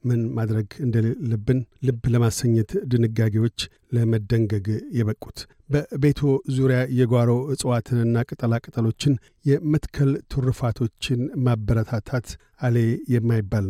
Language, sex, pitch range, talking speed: Amharic, male, 115-130 Hz, 90 wpm